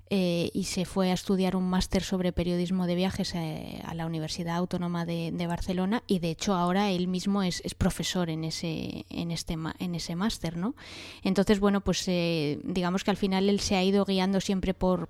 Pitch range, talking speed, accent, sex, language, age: 170-195 Hz, 205 wpm, Spanish, female, English, 20-39